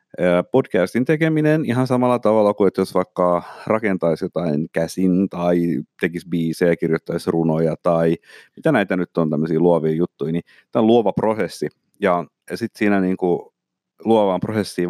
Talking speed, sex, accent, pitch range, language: 150 wpm, male, native, 85-110 Hz, Finnish